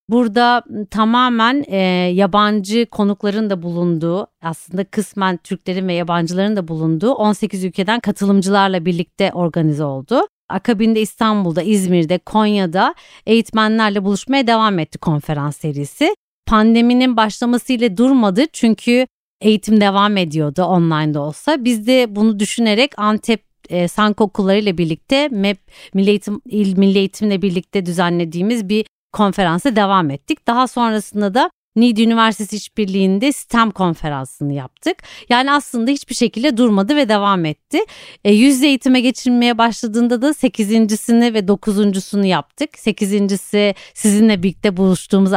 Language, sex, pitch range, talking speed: Turkish, female, 185-230 Hz, 120 wpm